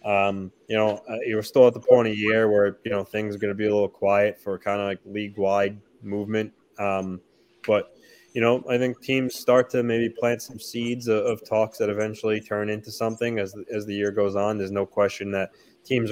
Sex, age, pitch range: male, 20-39, 100-110 Hz